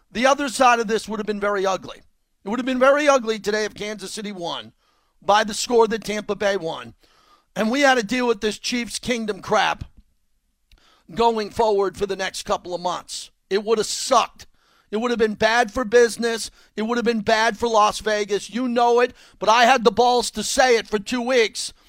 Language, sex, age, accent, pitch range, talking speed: English, male, 40-59, American, 205-250 Hz, 215 wpm